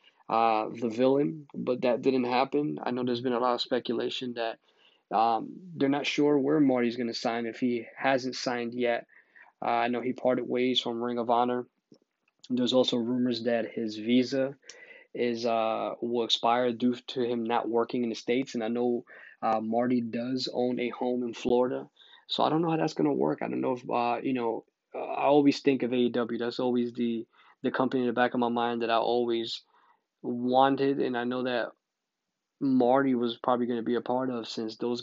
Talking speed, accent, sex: 205 wpm, American, male